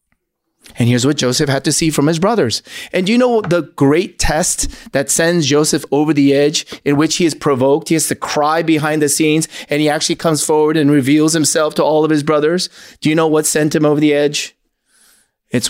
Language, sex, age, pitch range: English, male, 30-49, 130-160 Hz